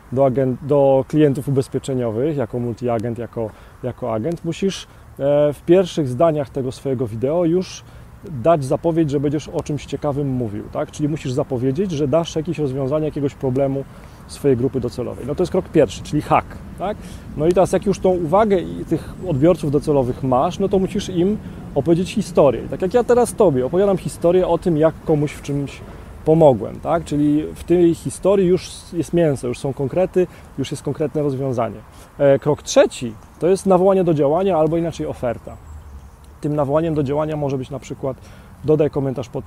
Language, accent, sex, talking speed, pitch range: Polish, native, male, 175 wpm, 130-170 Hz